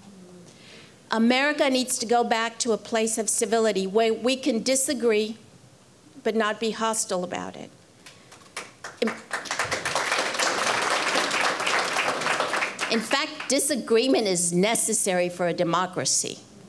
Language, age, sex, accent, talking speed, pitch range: English, 50-69, female, American, 100 wpm, 215-260 Hz